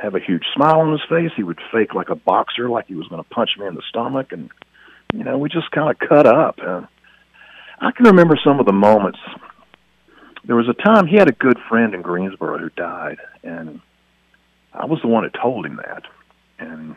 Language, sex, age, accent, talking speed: English, male, 50-69, American, 225 wpm